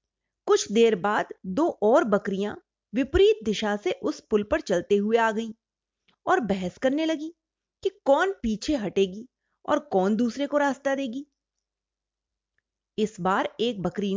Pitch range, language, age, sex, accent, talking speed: 195-300 Hz, Hindi, 30-49, female, native, 145 wpm